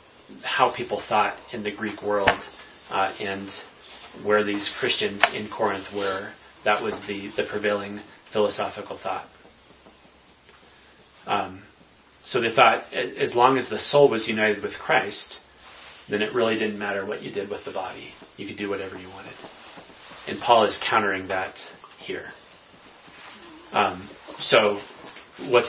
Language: English